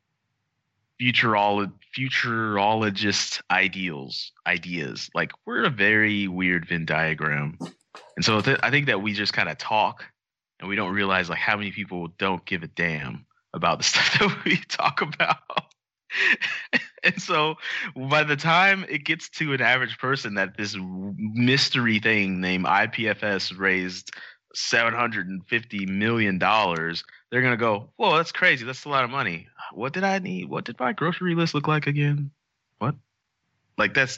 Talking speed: 150 wpm